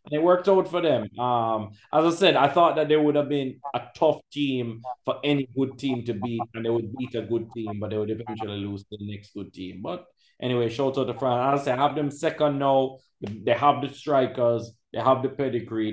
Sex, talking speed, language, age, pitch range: male, 240 wpm, English, 30-49, 120-150 Hz